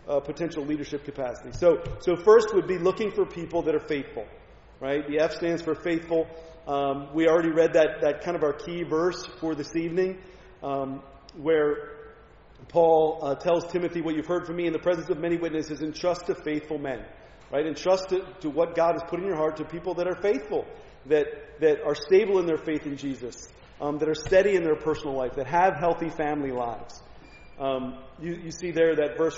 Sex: male